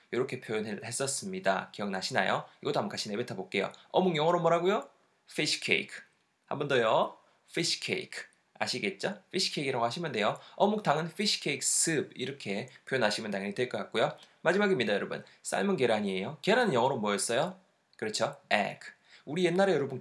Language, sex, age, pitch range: Korean, male, 20-39, 125-190 Hz